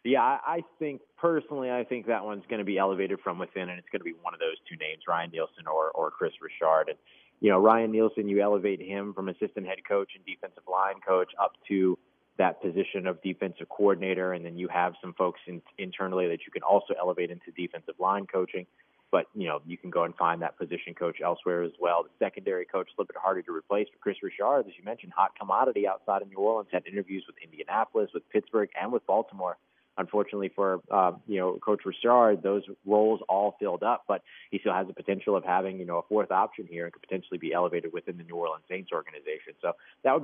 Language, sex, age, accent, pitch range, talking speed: English, male, 30-49, American, 95-145 Hz, 230 wpm